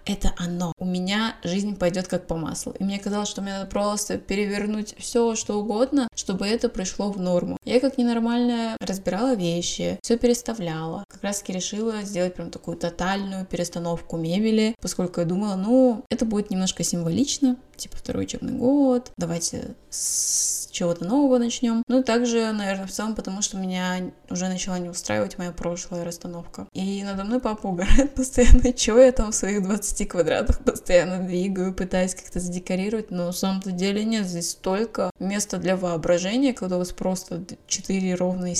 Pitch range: 185-235 Hz